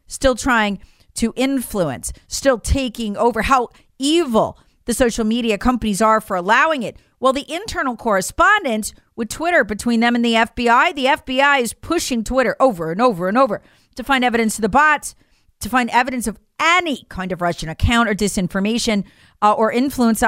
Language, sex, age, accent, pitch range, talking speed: English, female, 40-59, American, 220-285 Hz, 170 wpm